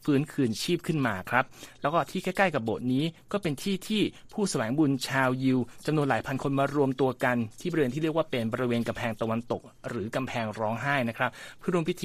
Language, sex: Thai, male